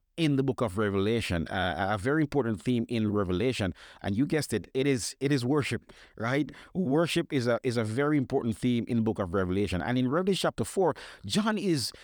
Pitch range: 115-155 Hz